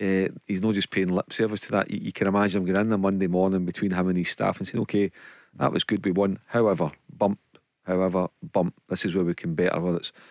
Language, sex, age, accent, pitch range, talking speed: English, male, 40-59, British, 90-100 Hz, 255 wpm